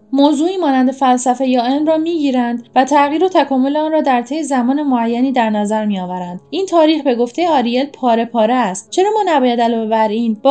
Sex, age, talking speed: female, 10-29, 190 wpm